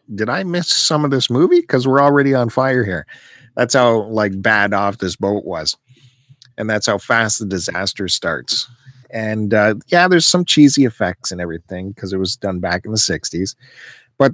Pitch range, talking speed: 100-130 Hz, 195 wpm